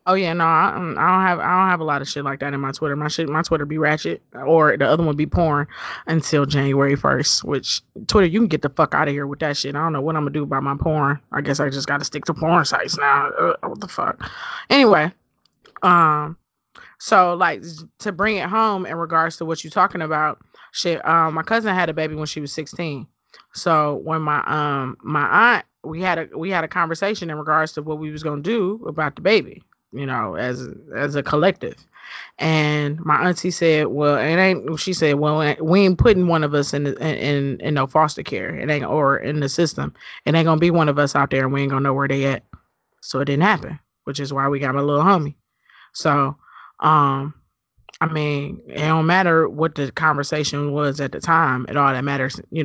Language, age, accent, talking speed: English, 20-39, American, 230 wpm